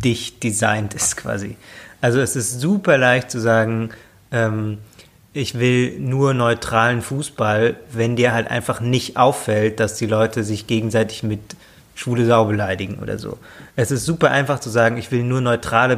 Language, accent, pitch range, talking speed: German, German, 110-120 Hz, 165 wpm